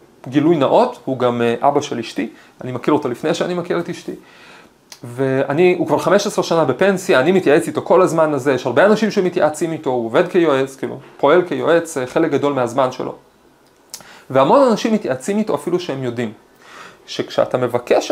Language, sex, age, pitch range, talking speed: Hebrew, male, 30-49, 135-210 Hz, 170 wpm